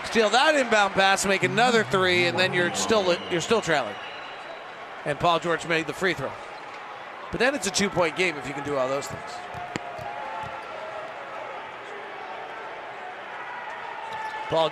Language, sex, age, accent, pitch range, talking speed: English, male, 40-59, American, 175-220 Hz, 145 wpm